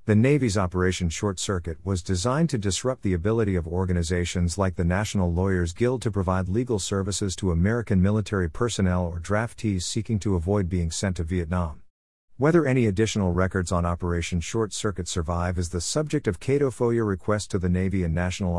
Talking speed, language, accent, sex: 180 wpm, English, American, male